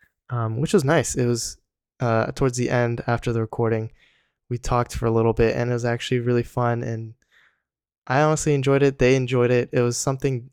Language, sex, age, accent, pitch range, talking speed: English, male, 10-29, American, 110-125 Hz, 205 wpm